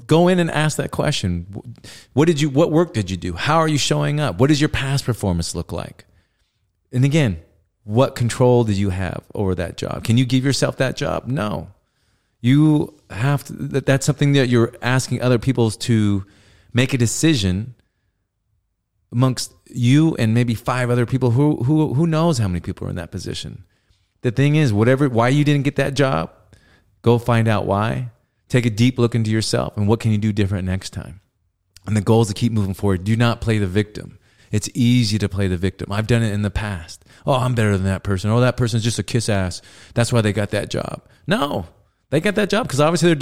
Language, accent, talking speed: English, American, 215 wpm